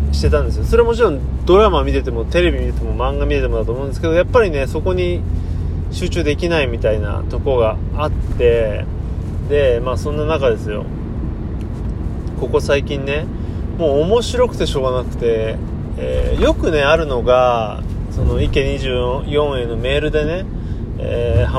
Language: Japanese